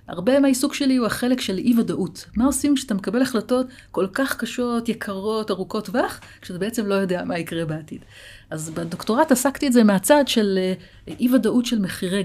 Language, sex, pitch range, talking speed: Hebrew, female, 175-250 Hz, 170 wpm